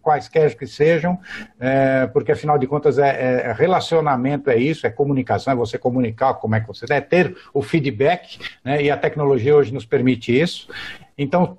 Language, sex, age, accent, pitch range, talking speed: Portuguese, male, 60-79, Brazilian, 140-180 Hz, 185 wpm